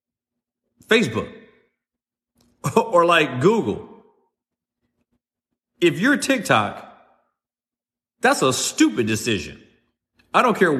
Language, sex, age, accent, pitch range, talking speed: English, male, 40-59, American, 120-140 Hz, 80 wpm